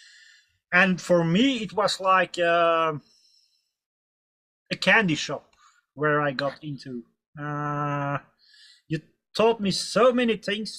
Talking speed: 115 wpm